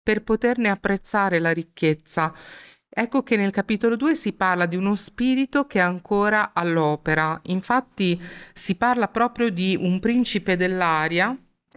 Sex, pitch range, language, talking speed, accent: female, 160-205 Hz, Italian, 140 wpm, native